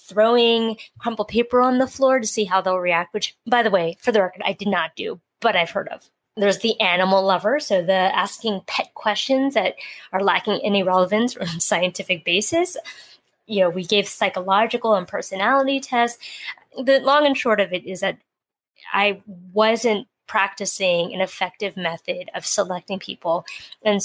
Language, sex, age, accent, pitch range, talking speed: English, female, 20-39, American, 185-225 Hz, 175 wpm